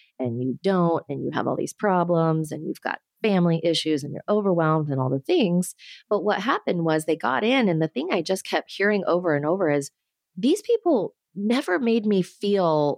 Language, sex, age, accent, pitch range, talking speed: English, female, 30-49, American, 150-200 Hz, 210 wpm